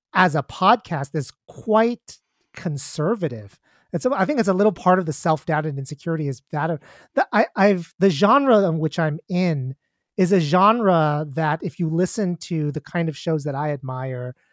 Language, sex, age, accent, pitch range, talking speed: English, male, 30-49, American, 150-190 Hz, 190 wpm